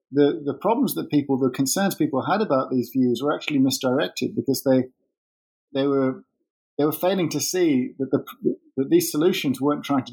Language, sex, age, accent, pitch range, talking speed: English, male, 50-69, British, 125-180 Hz, 190 wpm